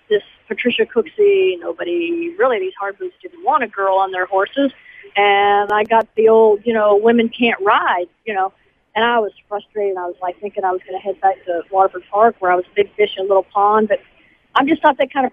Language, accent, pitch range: English, American, 205-275 Hz